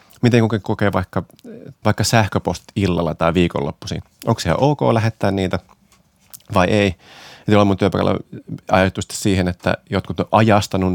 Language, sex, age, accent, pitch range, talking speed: Finnish, male, 30-49, native, 90-110 Hz, 135 wpm